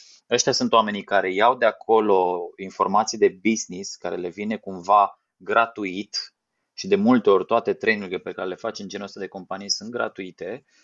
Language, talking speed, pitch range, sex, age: Romanian, 175 wpm, 100-125 Hz, male, 20-39